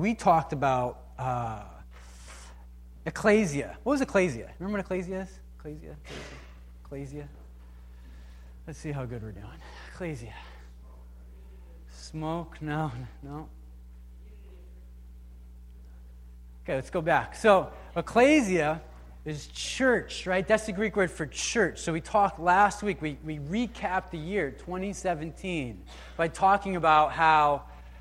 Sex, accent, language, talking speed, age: male, American, English, 115 wpm, 30-49